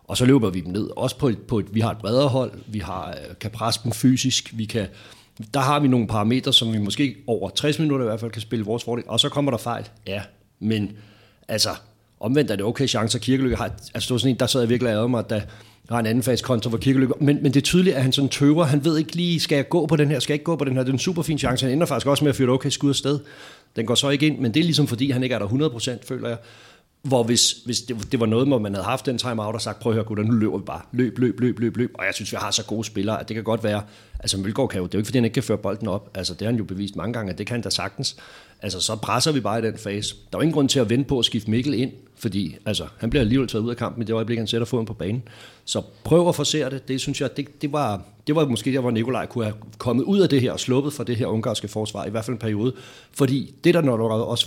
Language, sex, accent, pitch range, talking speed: Danish, male, native, 110-135 Hz, 315 wpm